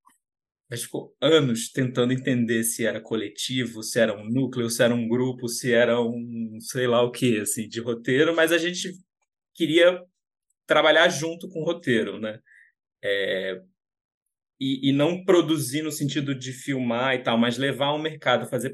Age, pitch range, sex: 20-39, 115-150 Hz, male